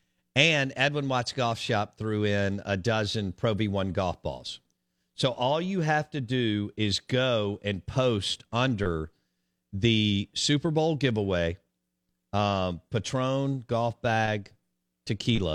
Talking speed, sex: 125 wpm, male